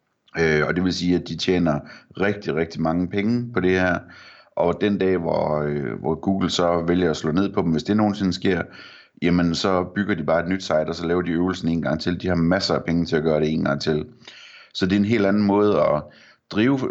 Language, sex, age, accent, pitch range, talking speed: Danish, male, 30-49, native, 80-95 Hz, 240 wpm